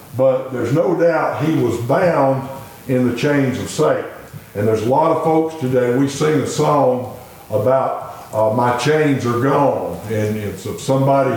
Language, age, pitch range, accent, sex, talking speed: English, 60-79, 130-160 Hz, American, male, 175 wpm